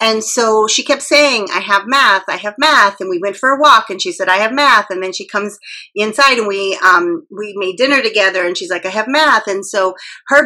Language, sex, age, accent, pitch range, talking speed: English, female, 40-59, American, 195-280 Hz, 250 wpm